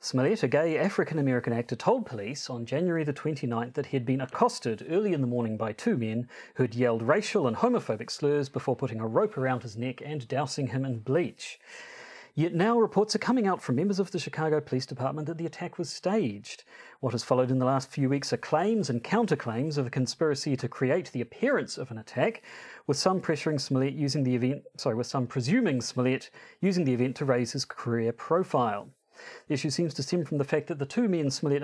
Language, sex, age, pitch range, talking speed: English, male, 40-59, 125-170 Hz, 220 wpm